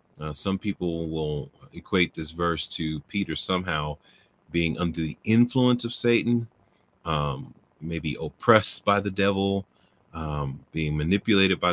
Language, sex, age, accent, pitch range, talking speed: English, male, 40-59, American, 80-105 Hz, 135 wpm